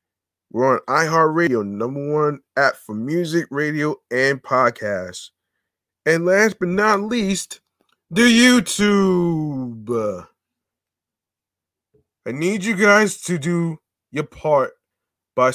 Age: 20-39